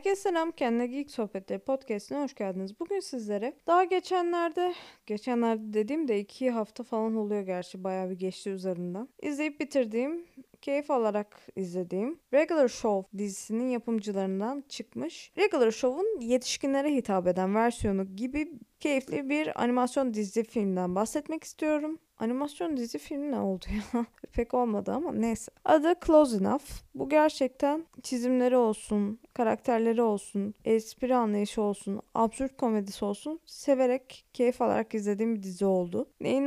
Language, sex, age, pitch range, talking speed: Turkish, female, 20-39, 210-290 Hz, 130 wpm